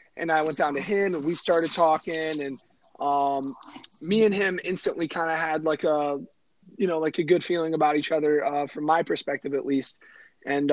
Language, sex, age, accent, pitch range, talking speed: English, male, 30-49, American, 140-165 Hz, 205 wpm